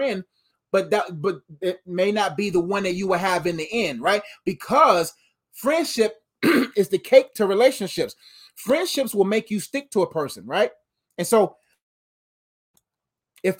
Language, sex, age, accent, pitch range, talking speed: English, male, 20-39, American, 165-220 Hz, 160 wpm